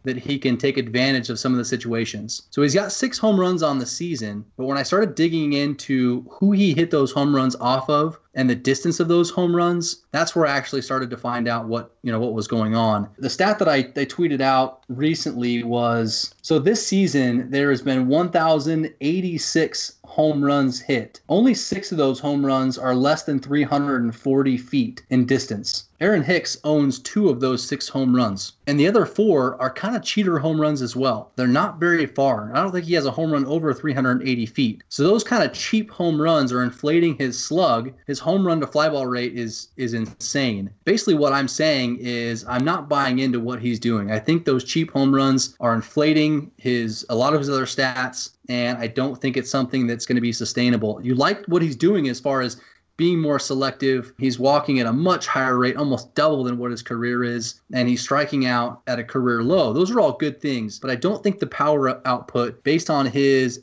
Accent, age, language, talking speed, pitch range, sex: American, 20-39, English, 220 wpm, 125-155 Hz, male